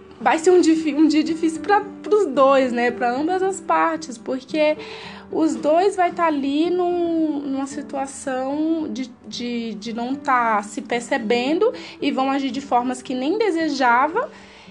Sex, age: female, 20-39